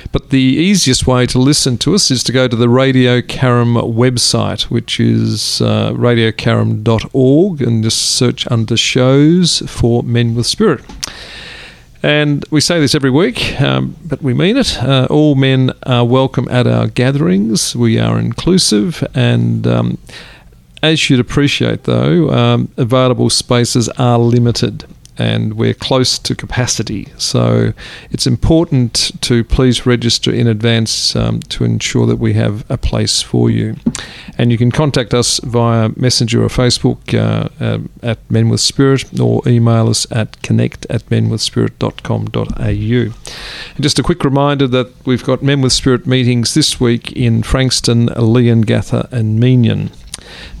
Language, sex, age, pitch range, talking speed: English, male, 40-59, 115-130 Hz, 150 wpm